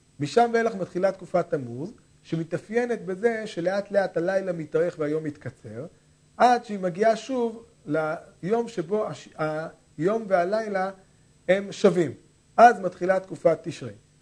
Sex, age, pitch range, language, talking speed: male, 40-59, 155-205 Hz, Hebrew, 120 wpm